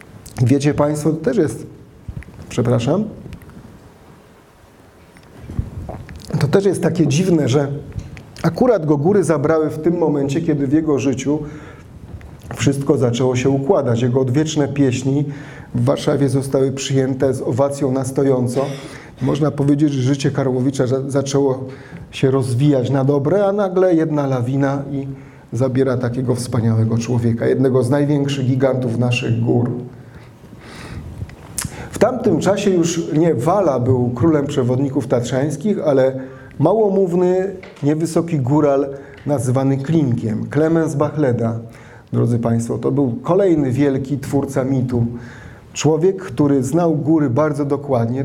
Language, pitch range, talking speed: Polish, 125-150 Hz, 115 wpm